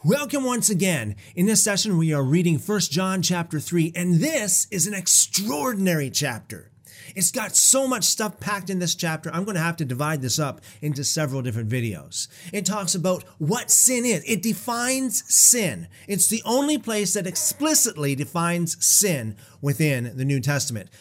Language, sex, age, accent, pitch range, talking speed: English, male, 30-49, American, 140-220 Hz, 175 wpm